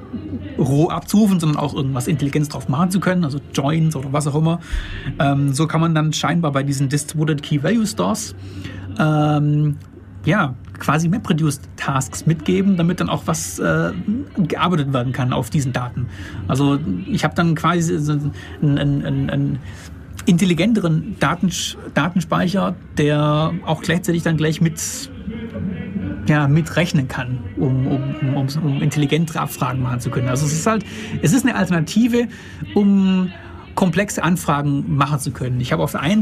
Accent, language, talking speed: German, German, 150 wpm